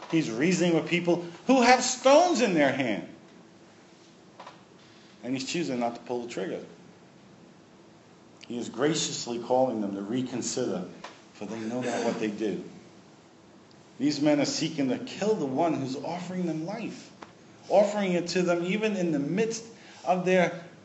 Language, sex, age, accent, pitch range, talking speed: English, male, 50-69, American, 125-180 Hz, 155 wpm